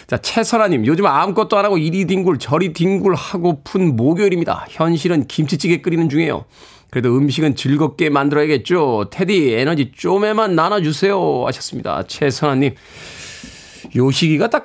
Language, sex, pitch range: Korean, male, 130-170 Hz